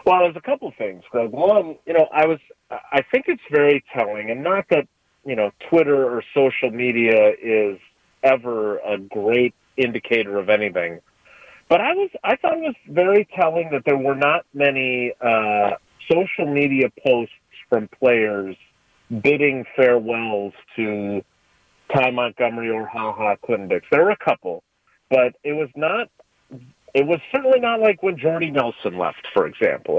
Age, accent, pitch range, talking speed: 40-59, American, 120-170 Hz, 160 wpm